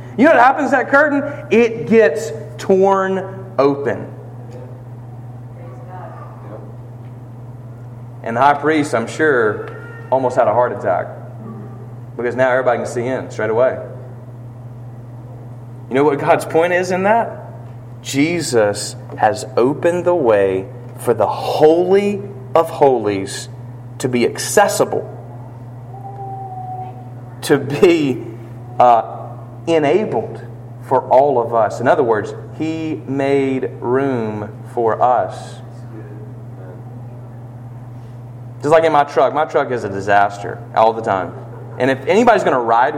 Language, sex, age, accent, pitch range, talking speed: English, male, 30-49, American, 120-140 Hz, 120 wpm